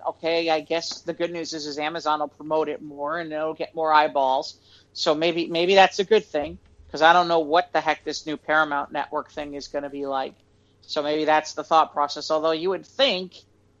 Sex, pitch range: male, 130-170 Hz